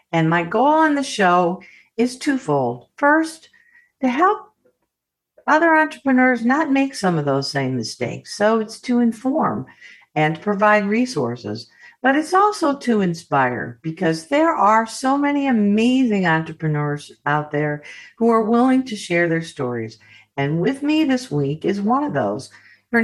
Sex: female